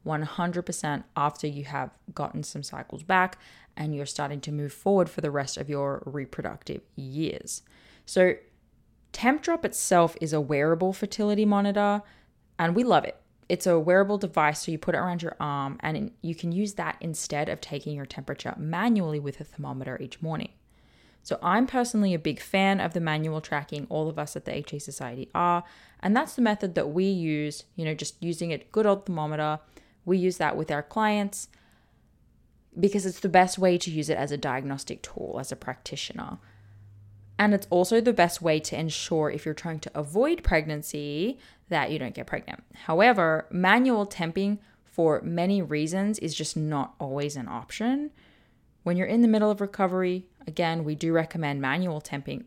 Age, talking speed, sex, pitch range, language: 20-39, 180 wpm, female, 150-195 Hz, English